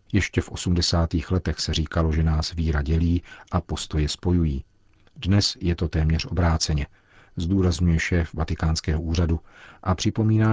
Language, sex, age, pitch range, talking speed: Czech, male, 50-69, 80-95 Hz, 135 wpm